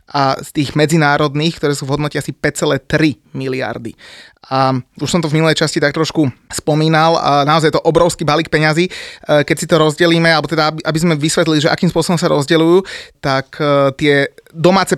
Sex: male